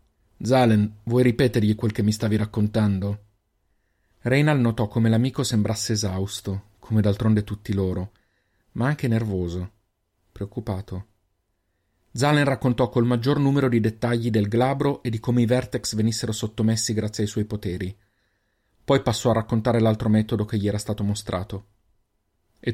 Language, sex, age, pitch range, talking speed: Italian, male, 40-59, 105-125 Hz, 145 wpm